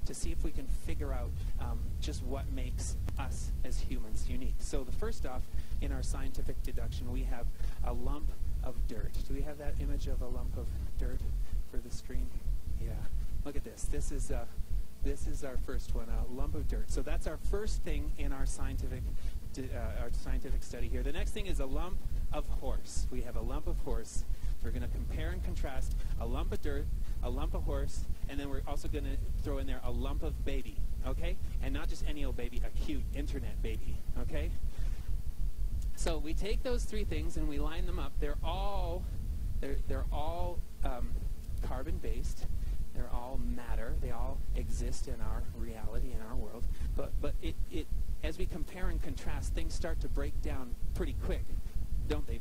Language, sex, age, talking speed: English, male, 30-49, 200 wpm